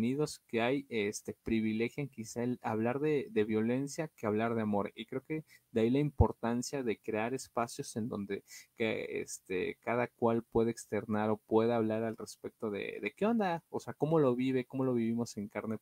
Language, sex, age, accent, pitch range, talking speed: Spanish, male, 30-49, Mexican, 110-135 Hz, 195 wpm